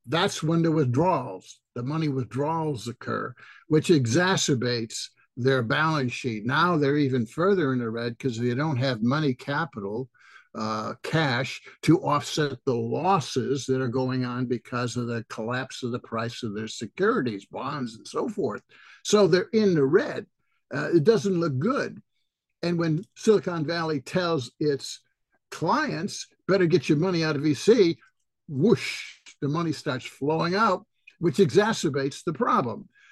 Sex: male